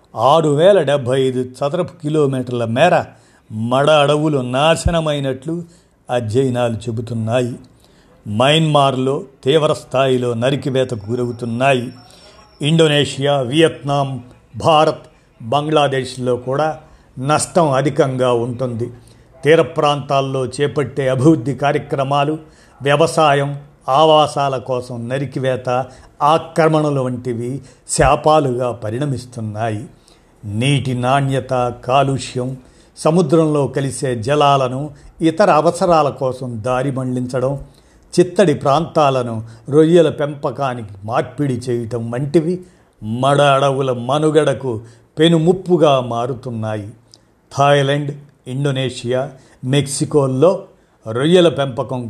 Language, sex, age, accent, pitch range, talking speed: Telugu, male, 50-69, native, 125-150 Hz, 75 wpm